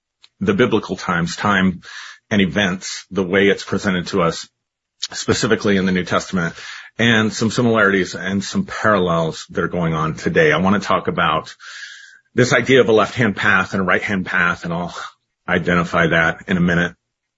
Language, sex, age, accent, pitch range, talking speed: English, male, 40-59, American, 95-110 Hz, 175 wpm